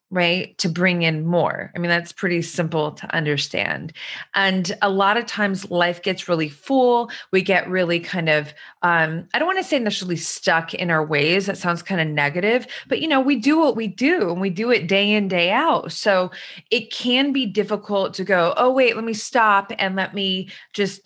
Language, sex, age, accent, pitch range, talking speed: English, female, 20-39, American, 175-225 Hz, 210 wpm